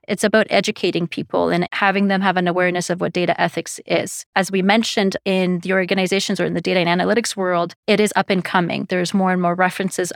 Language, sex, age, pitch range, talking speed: English, female, 30-49, 175-200 Hz, 225 wpm